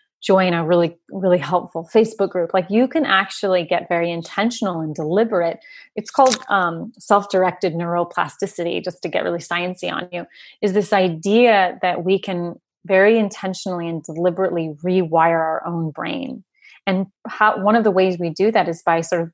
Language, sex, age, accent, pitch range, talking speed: English, female, 30-49, American, 175-220 Hz, 170 wpm